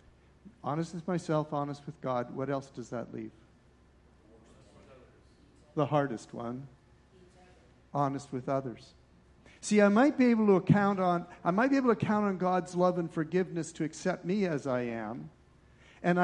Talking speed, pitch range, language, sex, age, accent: 160 wpm, 135-190 Hz, English, male, 50-69, American